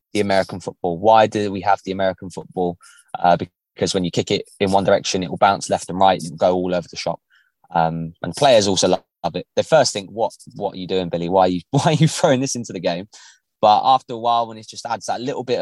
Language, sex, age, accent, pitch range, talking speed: English, male, 20-39, British, 95-110 Hz, 270 wpm